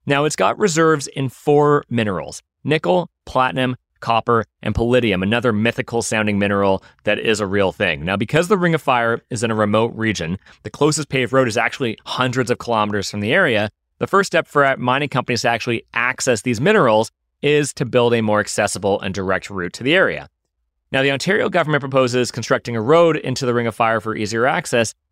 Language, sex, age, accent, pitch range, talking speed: English, male, 30-49, American, 105-145 Hz, 200 wpm